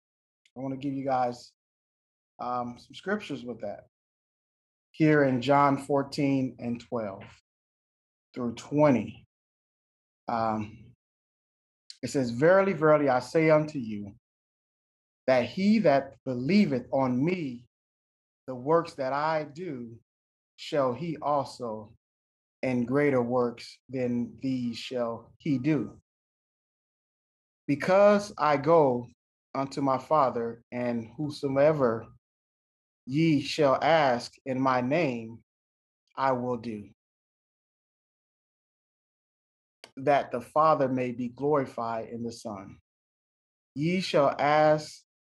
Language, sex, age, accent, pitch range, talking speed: English, male, 30-49, American, 115-145 Hz, 105 wpm